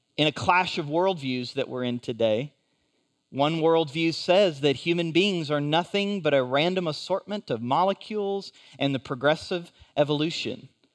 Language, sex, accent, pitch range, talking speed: English, male, American, 140-195 Hz, 150 wpm